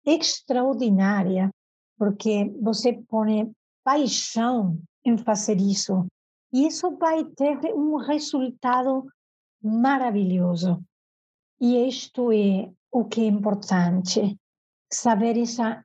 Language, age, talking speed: Portuguese, 50-69, 90 wpm